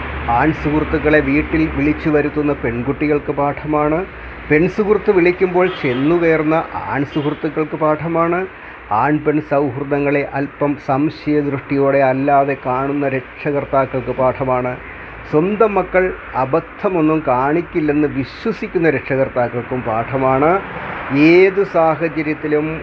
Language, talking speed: Malayalam, 80 wpm